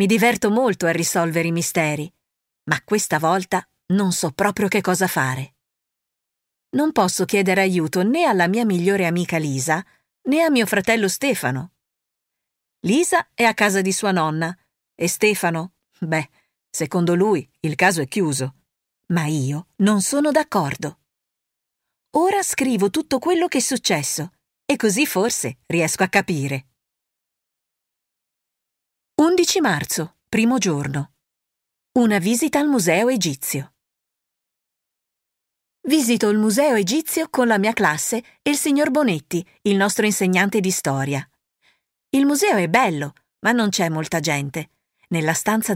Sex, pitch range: female, 165-250 Hz